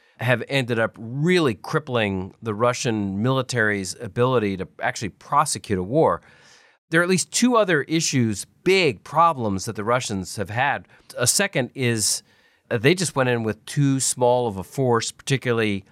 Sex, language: male, English